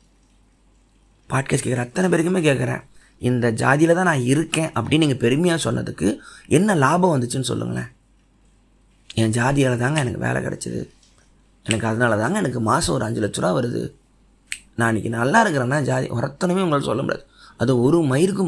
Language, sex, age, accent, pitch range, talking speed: Tamil, male, 30-49, native, 120-155 Hz, 140 wpm